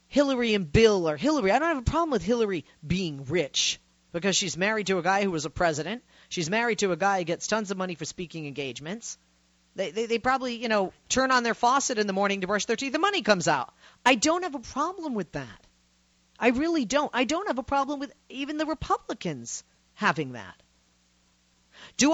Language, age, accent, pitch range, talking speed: English, 40-59, American, 160-240 Hz, 215 wpm